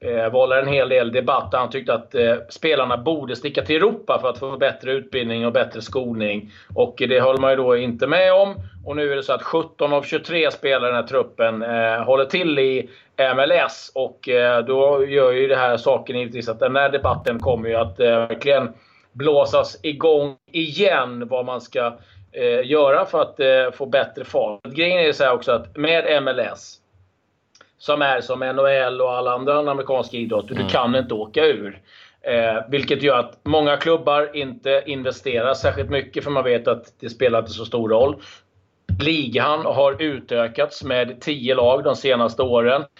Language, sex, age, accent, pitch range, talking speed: Swedish, male, 30-49, native, 120-145 Hz, 185 wpm